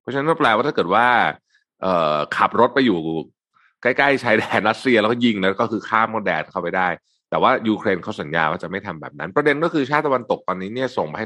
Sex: male